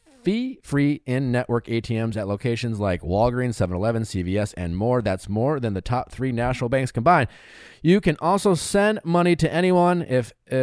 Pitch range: 110-155 Hz